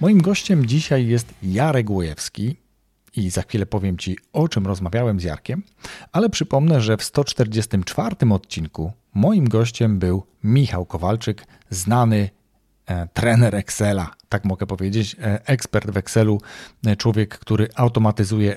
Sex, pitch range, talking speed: male, 100-120 Hz, 135 wpm